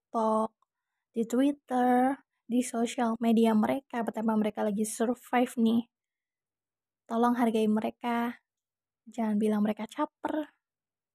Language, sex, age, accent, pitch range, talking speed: Indonesian, female, 20-39, native, 225-265 Hz, 100 wpm